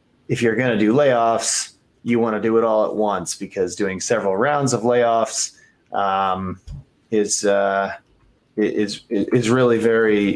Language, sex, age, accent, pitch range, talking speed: English, male, 30-49, American, 105-130 Hz, 155 wpm